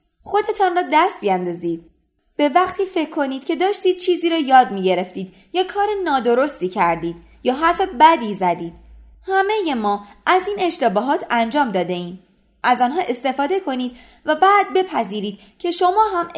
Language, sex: Persian, female